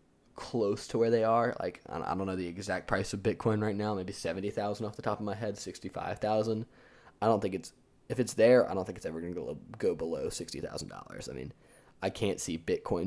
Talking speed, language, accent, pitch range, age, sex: 220 wpm, English, American, 90-110 Hz, 20-39, male